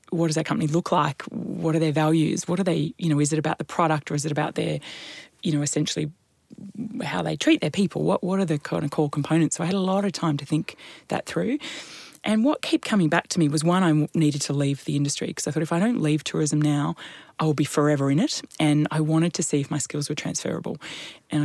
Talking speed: 255 wpm